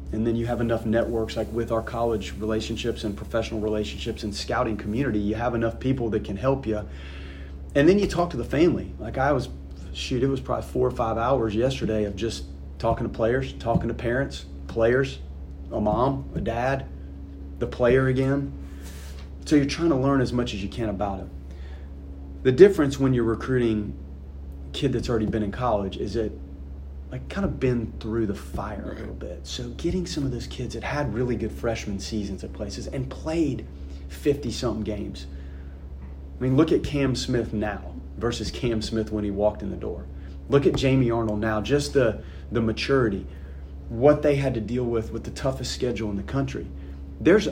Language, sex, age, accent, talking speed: English, male, 30-49, American, 190 wpm